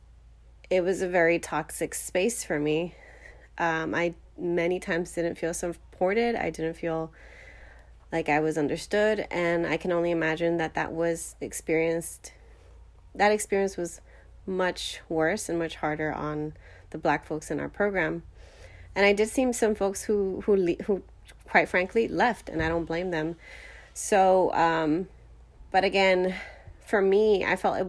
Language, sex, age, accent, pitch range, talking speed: English, female, 30-49, American, 150-180 Hz, 155 wpm